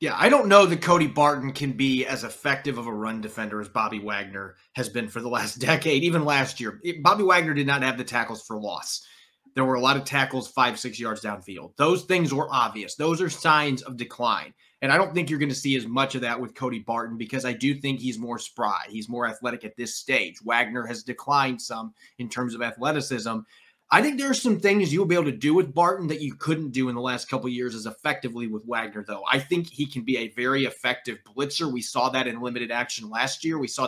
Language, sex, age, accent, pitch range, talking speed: English, male, 30-49, American, 120-155 Hz, 245 wpm